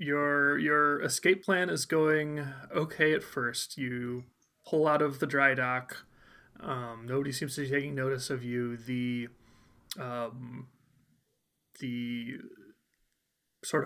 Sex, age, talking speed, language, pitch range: male, 30-49, 125 wpm, English, 125-150 Hz